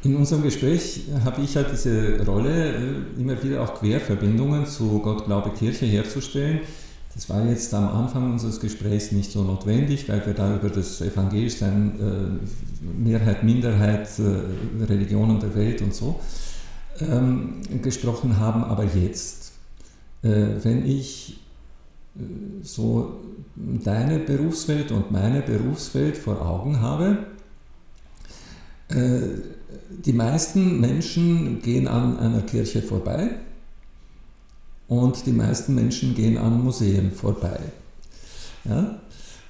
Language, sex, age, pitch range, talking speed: German, male, 50-69, 105-135 Hz, 105 wpm